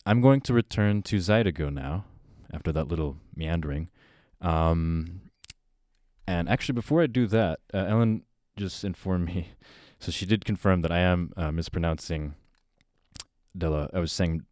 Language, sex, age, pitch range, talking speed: English, male, 20-39, 80-100 Hz, 150 wpm